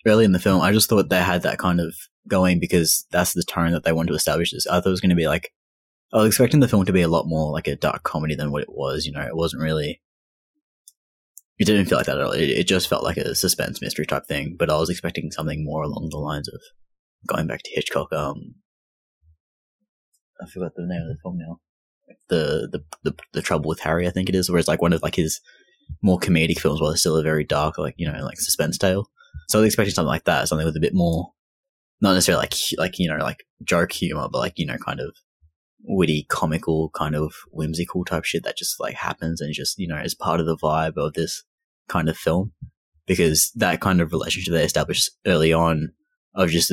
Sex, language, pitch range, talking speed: male, English, 80-90 Hz, 245 wpm